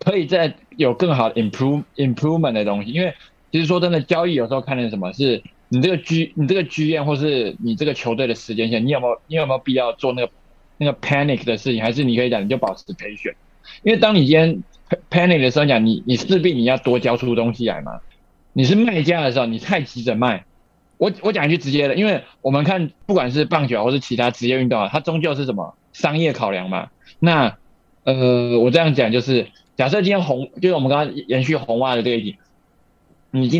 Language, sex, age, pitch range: Chinese, male, 20-39, 120-160 Hz